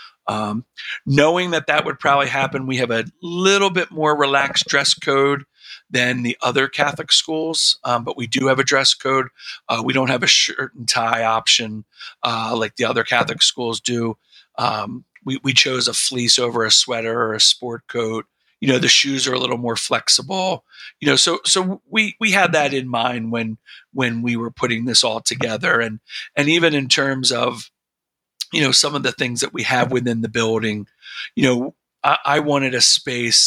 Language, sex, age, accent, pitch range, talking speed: English, male, 40-59, American, 115-140 Hz, 195 wpm